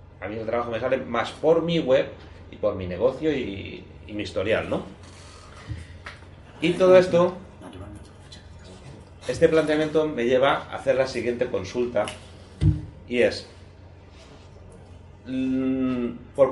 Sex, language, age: male, Spanish, 30-49